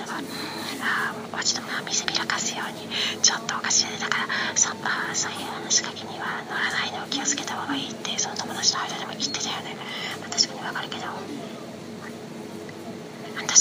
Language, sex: Japanese, female